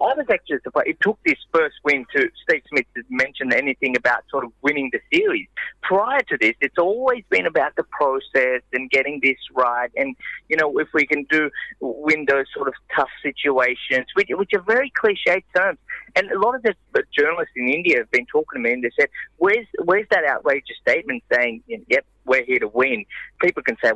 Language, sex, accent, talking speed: English, male, Australian, 215 wpm